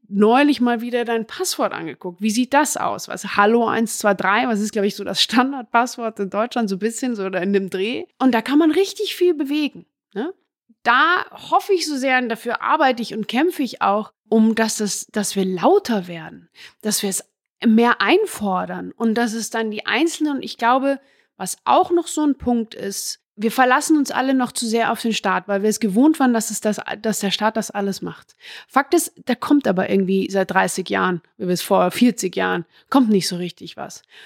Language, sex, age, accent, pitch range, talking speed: German, female, 30-49, German, 205-265 Hz, 210 wpm